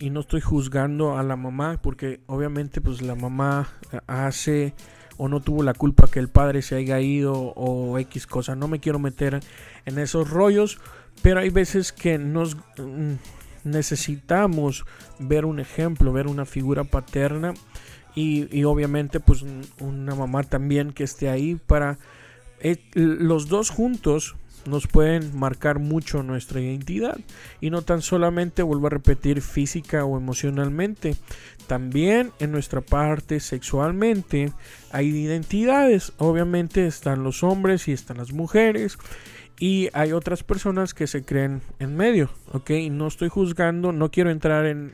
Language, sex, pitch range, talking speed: Spanish, male, 135-160 Hz, 150 wpm